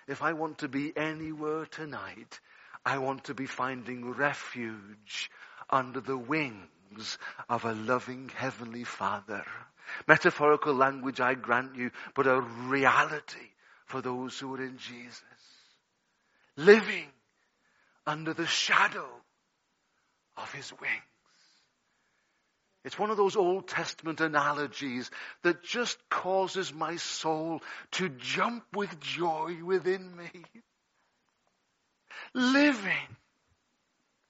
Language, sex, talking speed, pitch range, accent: English, male, 105 wpm, 130-165 Hz, British